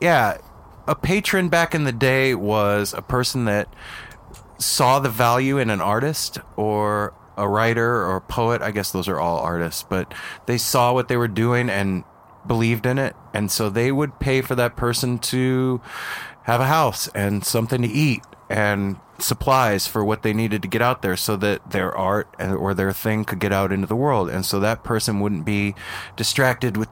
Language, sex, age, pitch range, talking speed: English, male, 30-49, 100-120 Hz, 195 wpm